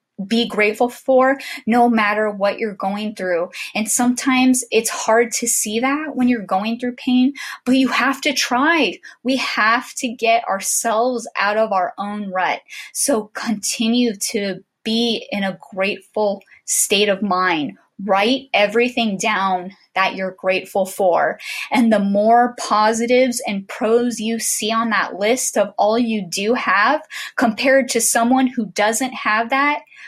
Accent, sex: American, female